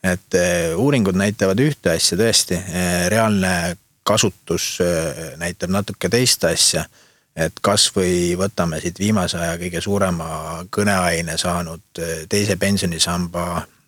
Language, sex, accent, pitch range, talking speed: English, male, Finnish, 85-105 Hz, 110 wpm